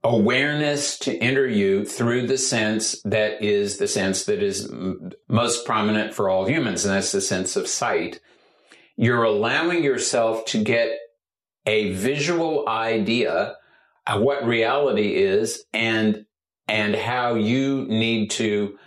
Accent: American